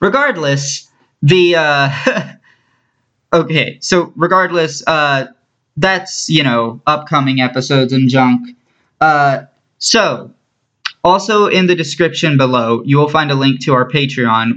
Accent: American